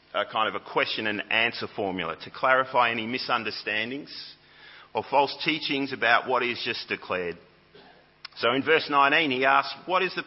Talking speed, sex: 170 wpm, male